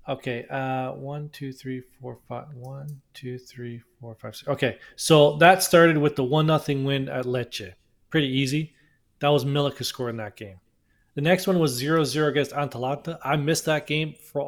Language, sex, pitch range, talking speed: English, male, 130-155 Hz, 185 wpm